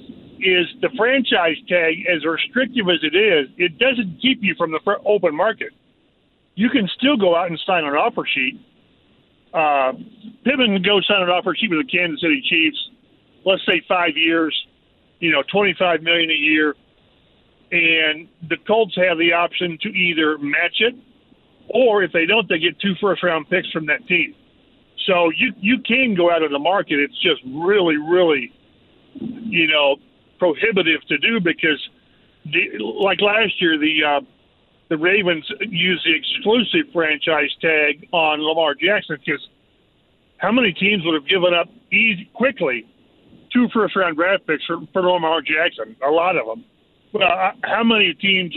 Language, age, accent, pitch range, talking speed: English, 40-59, American, 165-215 Hz, 165 wpm